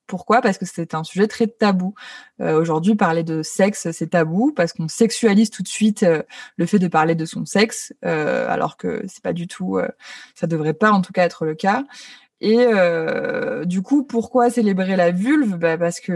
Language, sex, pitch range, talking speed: French, female, 170-230 Hz, 210 wpm